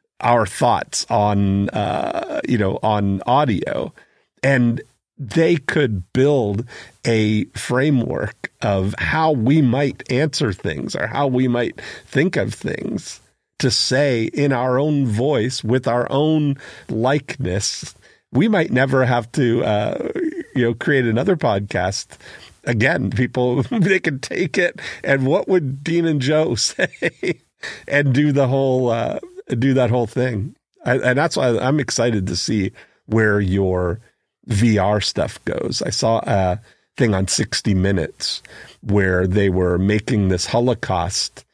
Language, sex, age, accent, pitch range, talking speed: English, male, 50-69, American, 100-135 Hz, 140 wpm